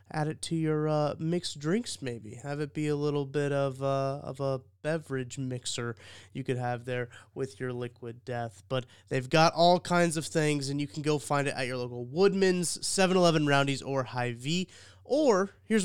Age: 20-39